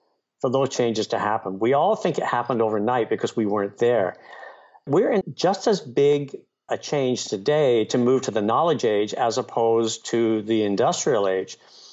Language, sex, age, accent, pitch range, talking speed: English, male, 60-79, American, 120-165 Hz, 170 wpm